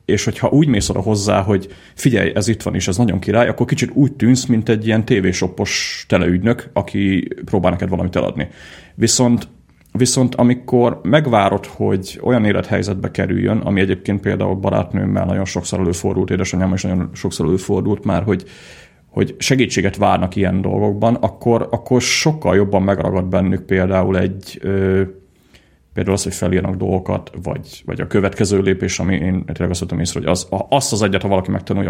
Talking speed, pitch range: 160 wpm, 90-110 Hz